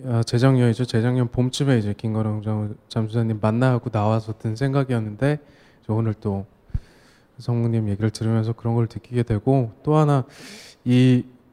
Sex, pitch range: male, 115-155 Hz